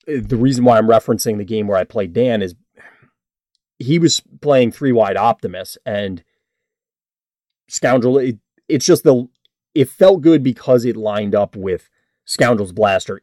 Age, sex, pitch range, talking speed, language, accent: 30-49, male, 95-125 Hz, 155 wpm, English, American